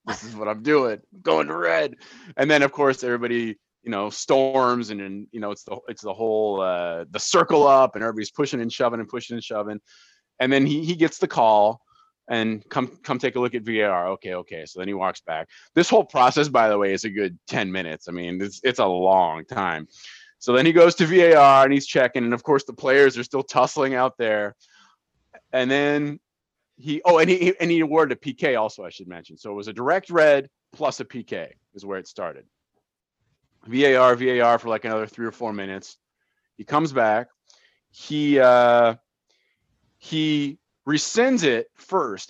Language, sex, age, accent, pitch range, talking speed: English, male, 20-39, American, 110-150 Hz, 205 wpm